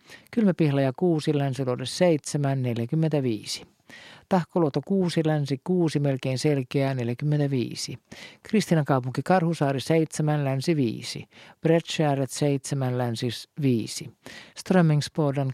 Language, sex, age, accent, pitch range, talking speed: Finnish, male, 50-69, native, 130-160 Hz, 95 wpm